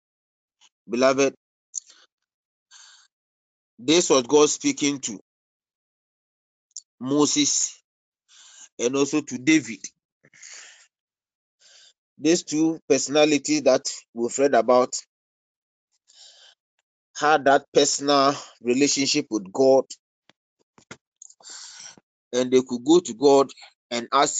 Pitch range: 130-180 Hz